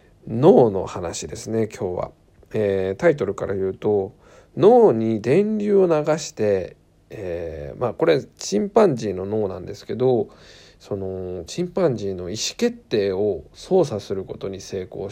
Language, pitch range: Japanese, 100-130 Hz